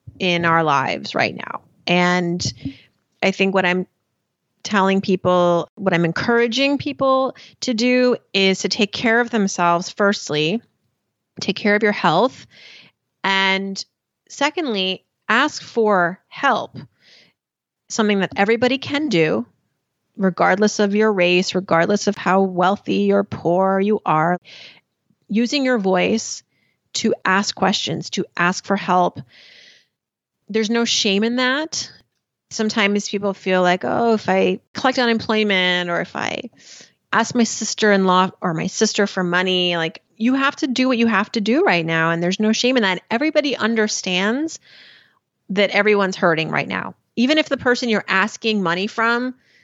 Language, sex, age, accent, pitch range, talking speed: English, female, 30-49, American, 180-230 Hz, 145 wpm